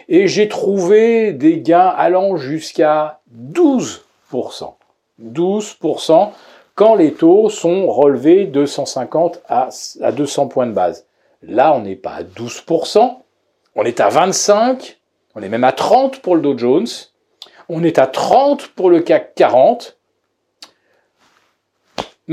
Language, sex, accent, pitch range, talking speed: French, male, French, 150-240 Hz, 130 wpm